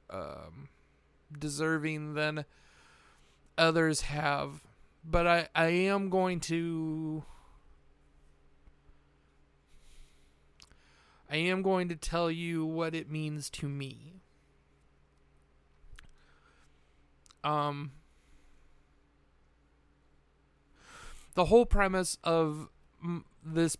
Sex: male